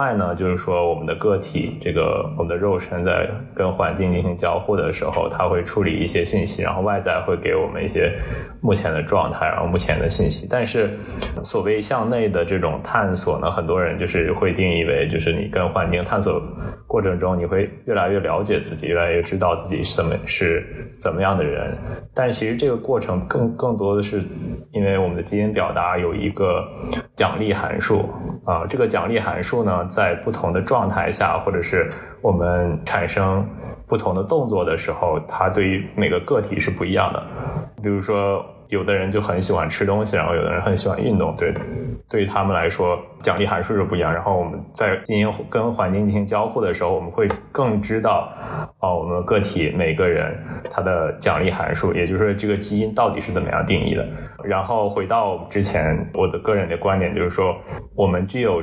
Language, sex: Chinese, male